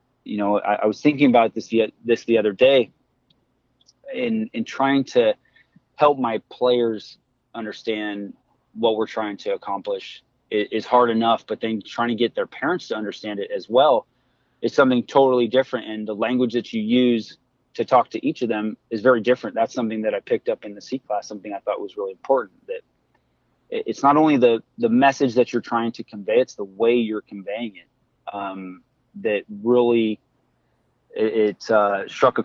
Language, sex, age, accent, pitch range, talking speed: English, male, 20-39, American, 110-135 Hz, 190 wpm